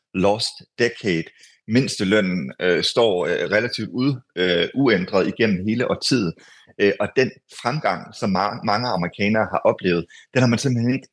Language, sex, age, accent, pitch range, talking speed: Danish, male, 30-49, native, 100-125 Hz, 145 wpm